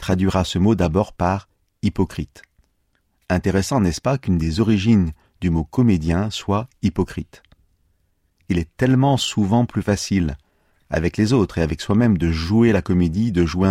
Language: French